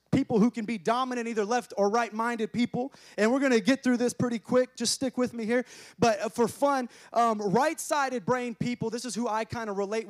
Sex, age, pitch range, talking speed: male, 30-49, 200-245 Hz, 230 wpm